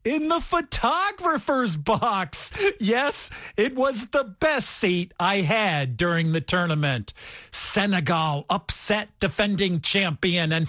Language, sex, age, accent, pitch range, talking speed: English, male, 40-59, American, 165-225 Hz, 110 wpm